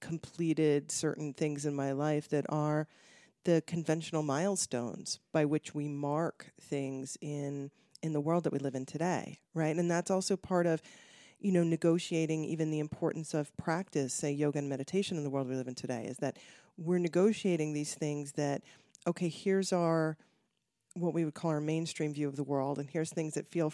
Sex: female